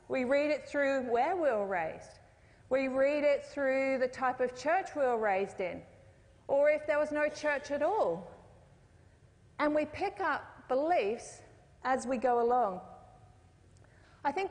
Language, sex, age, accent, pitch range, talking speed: English, female, 40-59, Australian, 210-285 Hz, 160 wpm